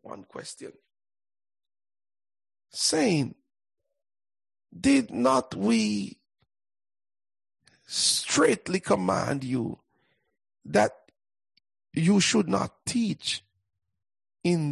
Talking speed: 60 wpm